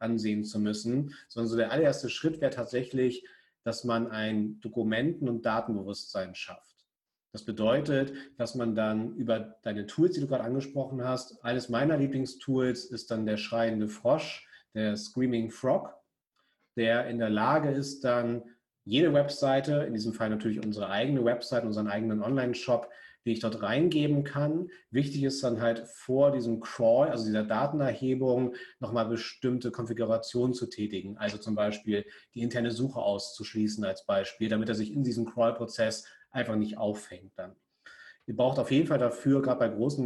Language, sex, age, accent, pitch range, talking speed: German, male, 40-59, German, 115-130 Hz, 160 wpm